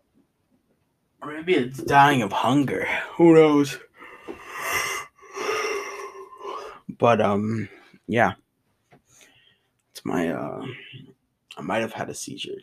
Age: 20-39